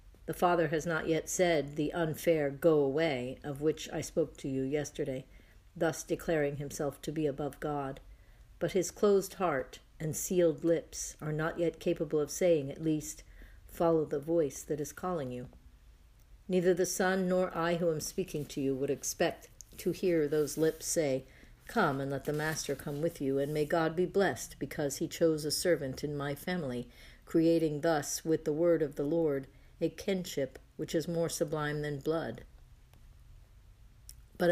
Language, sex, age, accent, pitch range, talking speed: English, female, 50-69, American, 140-170 Hz, 175 wpm